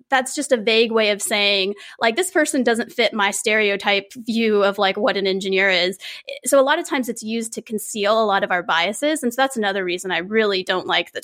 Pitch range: 200-255 Hz